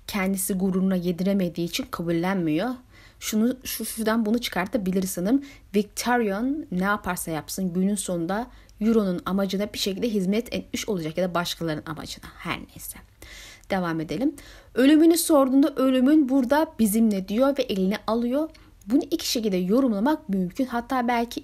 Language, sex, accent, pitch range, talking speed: Turkish, female, native, 195-260 Hz, 130 wpm